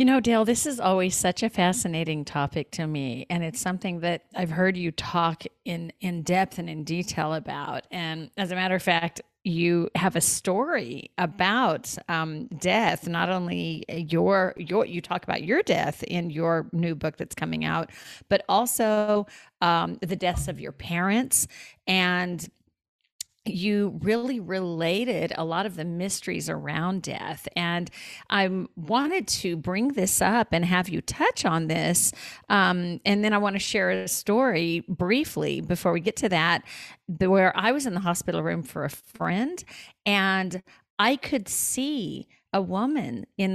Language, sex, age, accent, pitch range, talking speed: English, female, 40-59, American, 170-205 Hz, 165 wpm